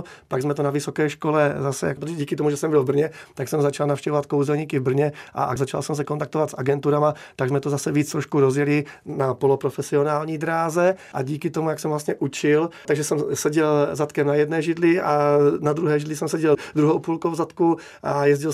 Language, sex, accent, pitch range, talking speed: Czech, male, native, 140-155 Hz, 210 wpm